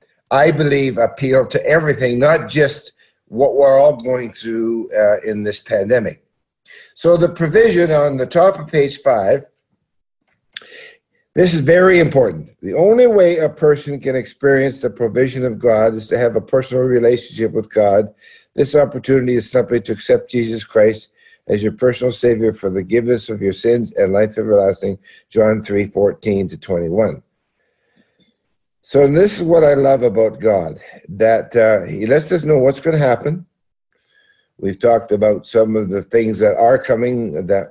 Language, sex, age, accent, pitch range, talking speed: English, male, 60-79, American, 110-165 Hz, 160 wpm